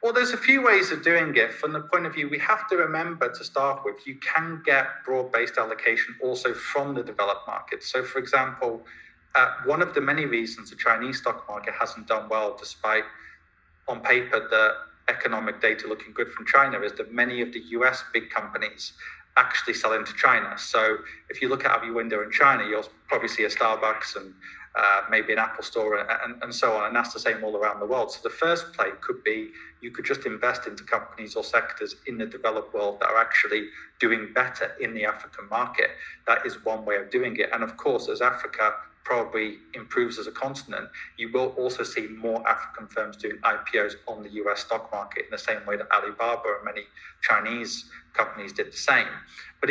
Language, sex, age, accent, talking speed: English, male, 30-49, British, 210 wpm